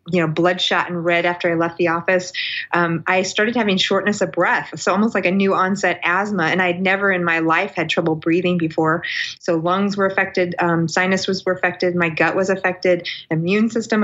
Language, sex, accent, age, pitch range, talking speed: English, female, American, 30-49, 175-200 Hz, 210 wpm